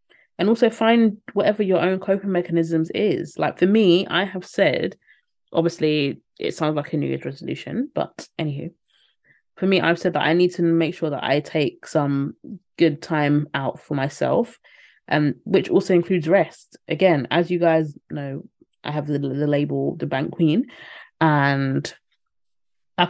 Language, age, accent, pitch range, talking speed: English, 20-39, British, 155-190 Hz, 165 wpm